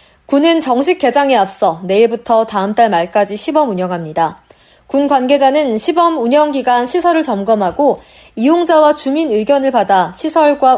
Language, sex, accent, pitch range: Korean, female, native, 225-310 Hz